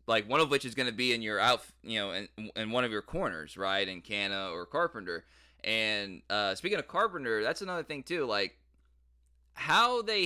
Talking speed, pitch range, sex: 210 wpm, 90-135 Hz, male